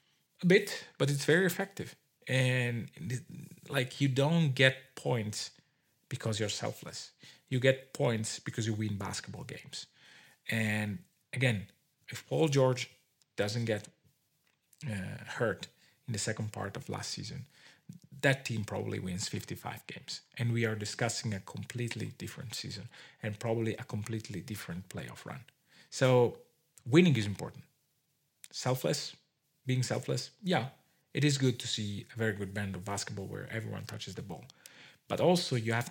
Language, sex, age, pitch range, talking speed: English, male, 40-59, 110-145 Hz, 145 wpm